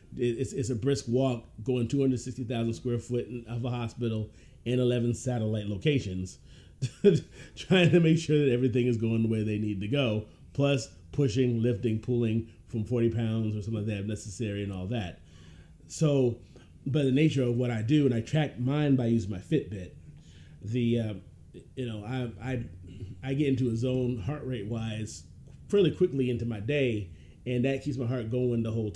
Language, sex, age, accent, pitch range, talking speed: English, male, 30-49, American, 110-135 Hz, 185 wpm